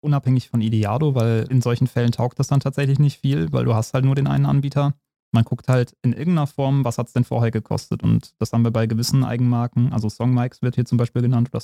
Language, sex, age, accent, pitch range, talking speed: German, male, 20-39, German, 115-130 Hz, 245 wpm